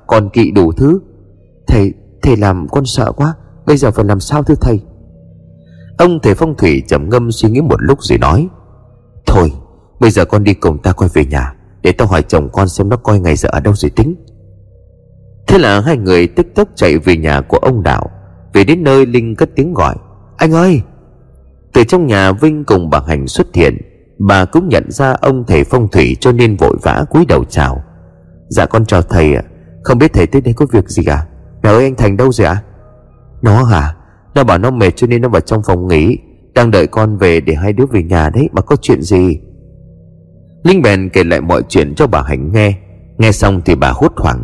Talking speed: 220 wpm